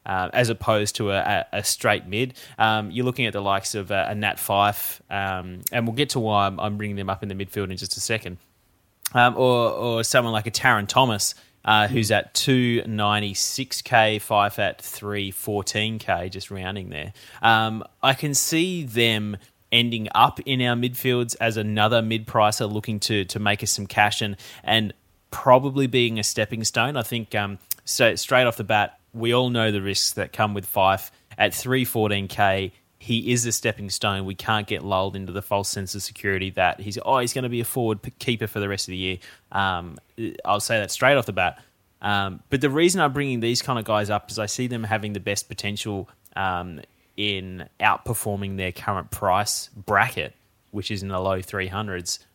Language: English